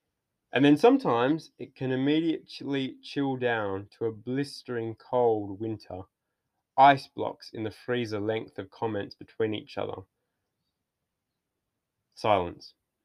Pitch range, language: 100-125 Hz, English